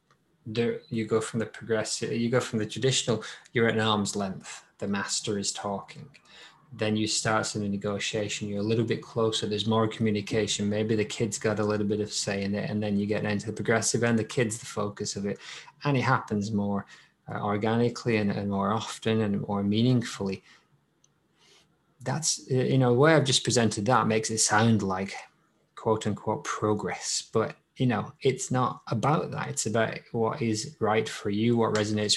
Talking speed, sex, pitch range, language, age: 190 wpm, male, 105-120 Hz, English, 20-39